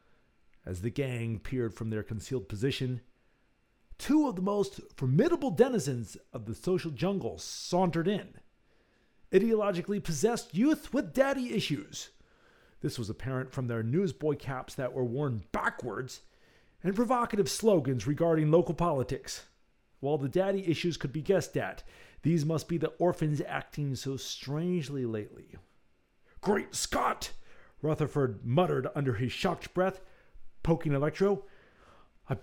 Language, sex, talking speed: English, male, 130 wpm